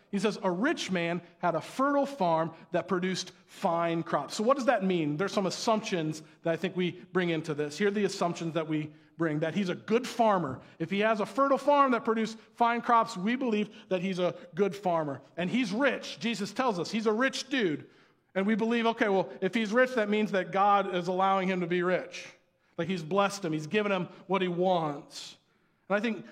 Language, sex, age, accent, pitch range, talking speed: English, male, 40-59, American, 175-235 Hz, 225 wpm